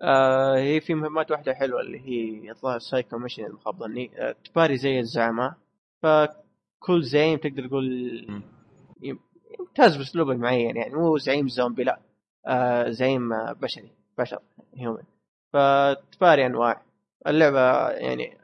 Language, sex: Arabic, male